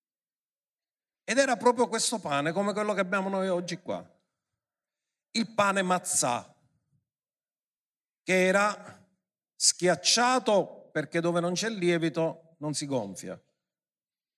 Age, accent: 50-69, native